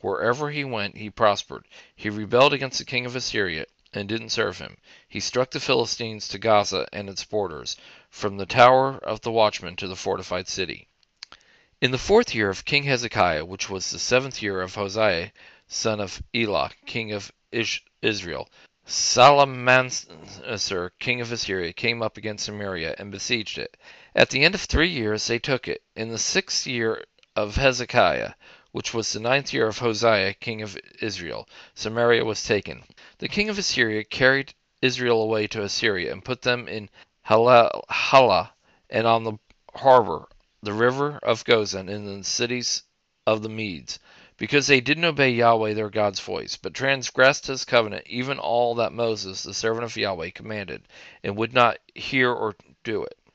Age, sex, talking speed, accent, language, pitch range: 40-59, male, 170 wpm, American, English, 105-125 Hz